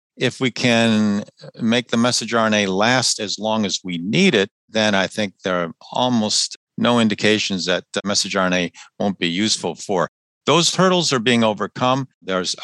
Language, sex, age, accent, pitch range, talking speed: English, male, 50-69, American, 95-120 Hz, 165 wpm